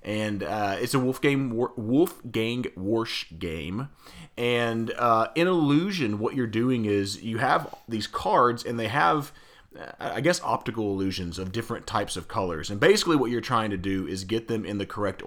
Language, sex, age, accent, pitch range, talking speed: English, male, 30-49, American, 95-125 Hz, 185 wpm